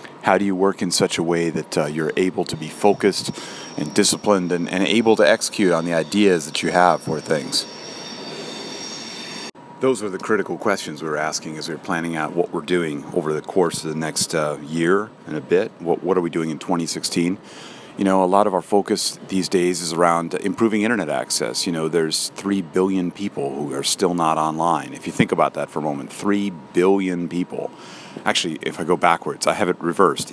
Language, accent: English, American